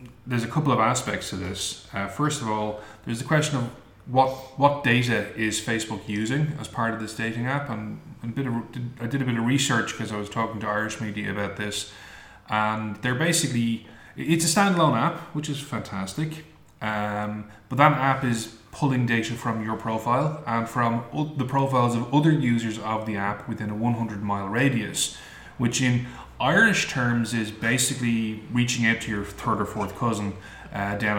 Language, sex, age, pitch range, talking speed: English, male, 20-39, 110-135 Hz, 190 wpm